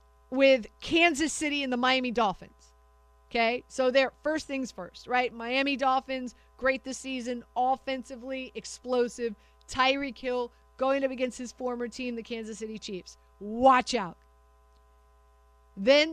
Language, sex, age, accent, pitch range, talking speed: English, female, 40-59, American, 190-270 Hz, 135 wpm